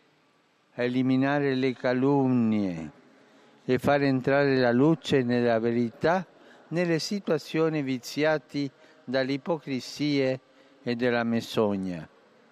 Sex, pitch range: male, 125-155 Hz